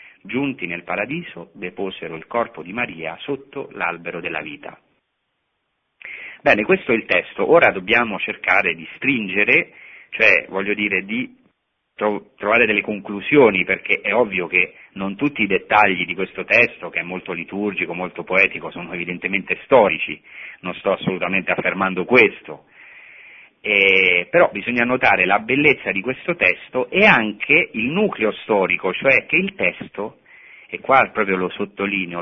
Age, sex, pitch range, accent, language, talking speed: 40-59, male, 95-130 Hz, native, Italian, 145 wpm